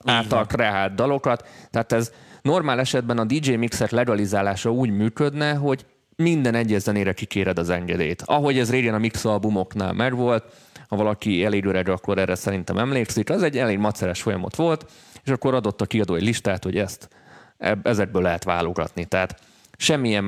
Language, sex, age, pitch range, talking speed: Hungarian, male, 30-49, 95-120 Hz, 155 wpm